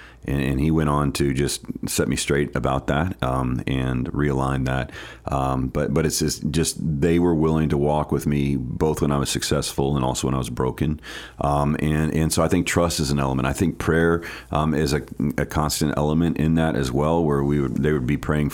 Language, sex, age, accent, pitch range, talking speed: English, male, 40-59, American, 70-80 Hz, 225 wpm